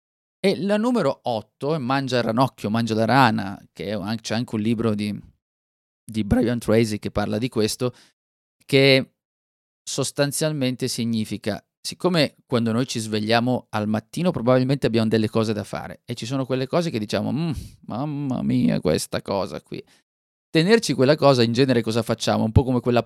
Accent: native